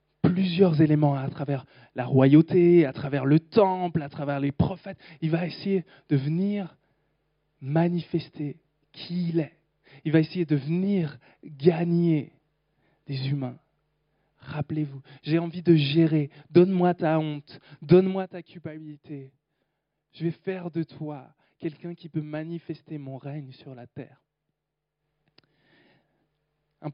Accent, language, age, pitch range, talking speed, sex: French, French, 20-39, 140-170 Hz, 125 wpm, male